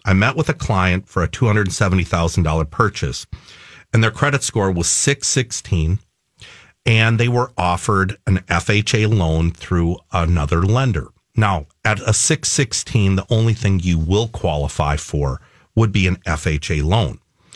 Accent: American